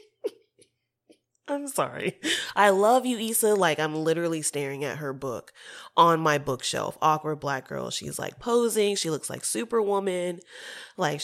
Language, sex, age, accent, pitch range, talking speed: English, female, 20-39, American, 150-190 Hz, 145 wpm